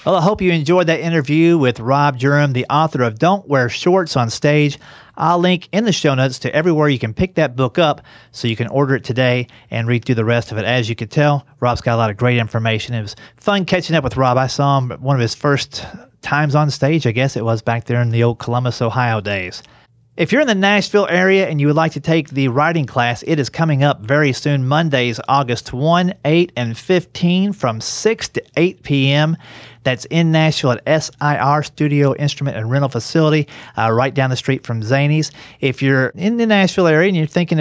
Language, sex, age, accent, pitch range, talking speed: English, male, 30-49, American, 120-155 Hz, 230 wpm